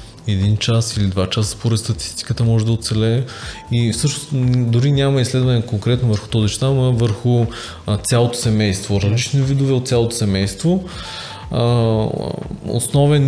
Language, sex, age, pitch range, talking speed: Bulgarian, male, 20-39, 105-120 Hz, 125 wpm